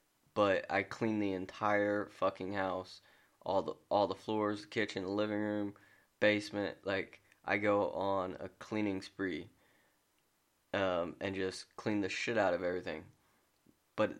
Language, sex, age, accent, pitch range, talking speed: English, male, 20-39, American, 95-105 Hz, 150 wpm